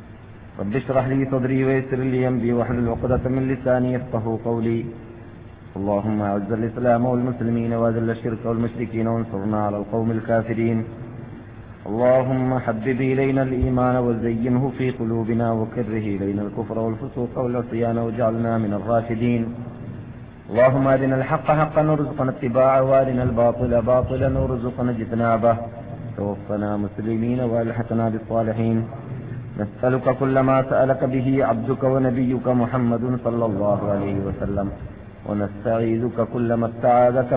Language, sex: Malayalam, male